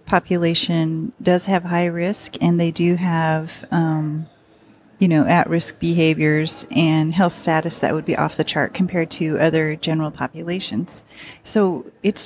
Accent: American